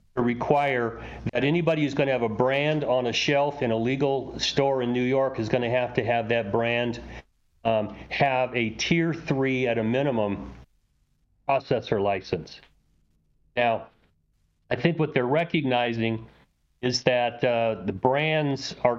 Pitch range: 115-140 Hz